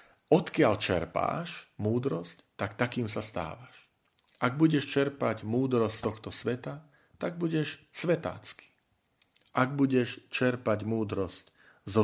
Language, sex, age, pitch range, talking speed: Slovak, male, 40-59, 105-125 Hz, 110 wpm